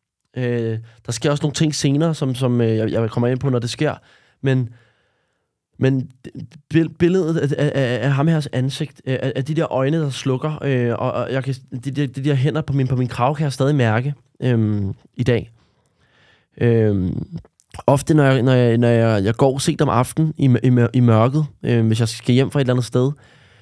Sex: male